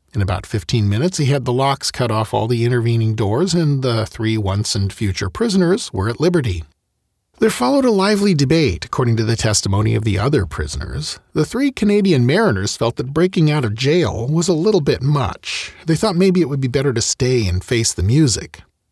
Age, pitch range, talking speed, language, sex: 40-59, 105-150 Hz, 200 wpm, English, male